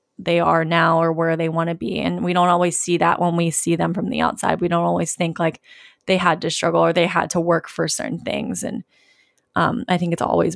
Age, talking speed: 20-39, 255 wpm